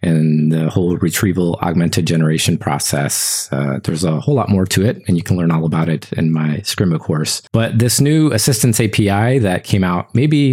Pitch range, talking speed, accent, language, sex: 90-120 Hz, 200 wpm, American, English, male